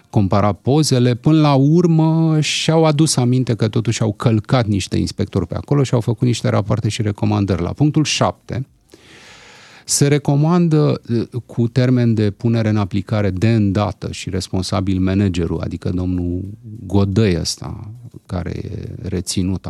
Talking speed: 140 wpm